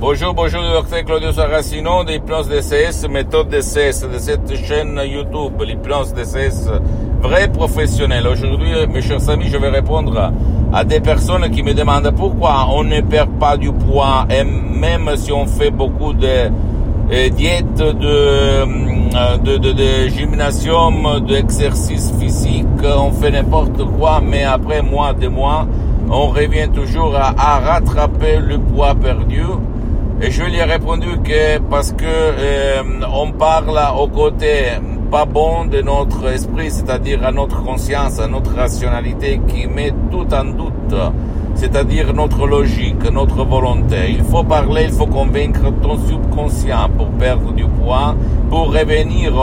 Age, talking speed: 60-79, 150 wpm